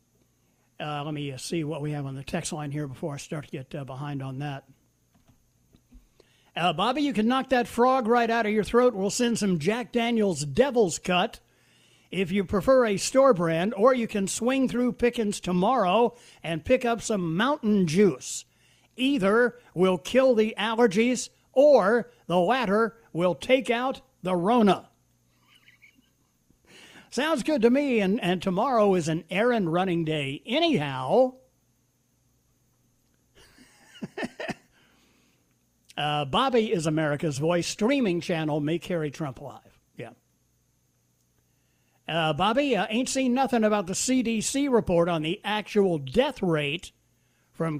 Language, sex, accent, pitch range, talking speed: English, male, American, 160-235 Hz, 145 wpm